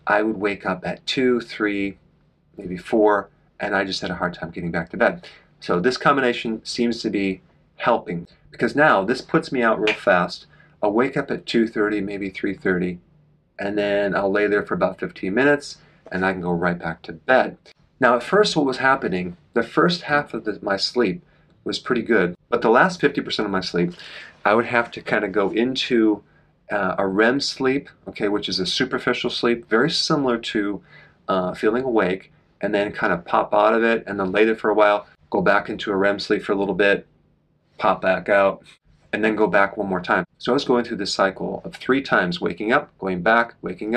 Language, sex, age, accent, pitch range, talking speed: English, male, 40-59, American, 95-120 Hz, 210 wpm